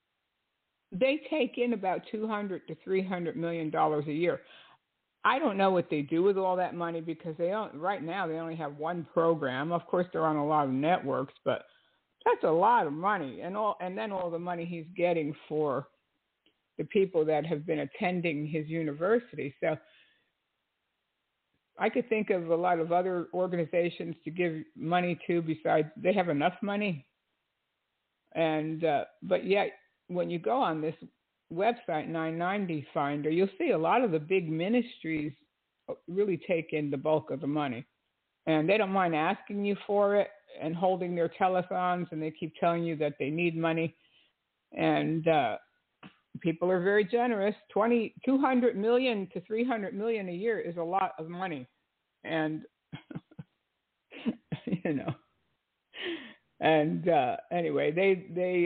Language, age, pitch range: English, 60-79, 160-200 Hz